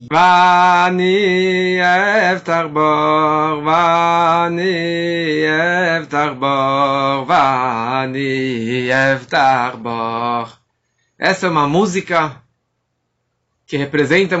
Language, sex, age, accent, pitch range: Portuguese, male, 20-39, Brazilian, 145-185 Hz